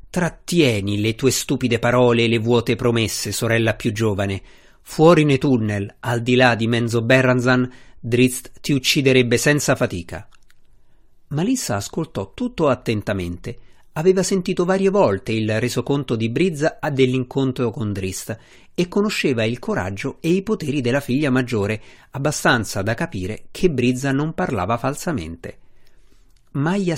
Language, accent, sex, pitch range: Italian, native, male, 110-140 Hz